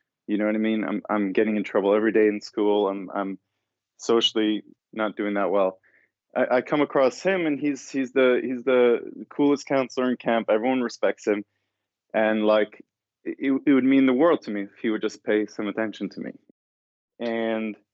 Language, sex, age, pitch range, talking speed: English, male, 20-39, 105-130 Hz, 195 wpm